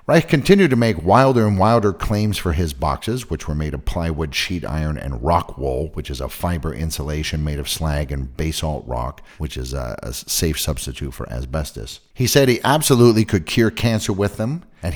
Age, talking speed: 50-69, 200 wpm